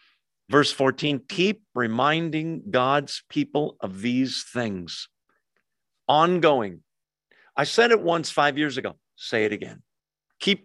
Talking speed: 120 wpm